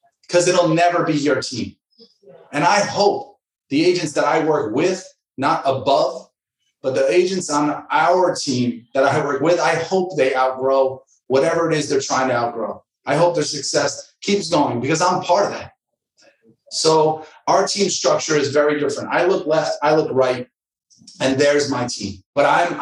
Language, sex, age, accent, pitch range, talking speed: English, male, 30-49, American, 140-165 Hz, 180 wpm